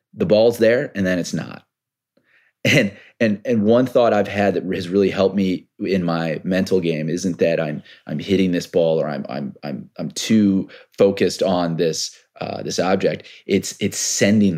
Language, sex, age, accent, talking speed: English, male, 30-49, American, 185 wpm